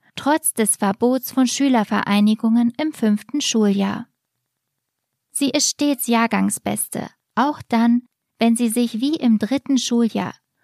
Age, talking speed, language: 20-39, 120 wpm, German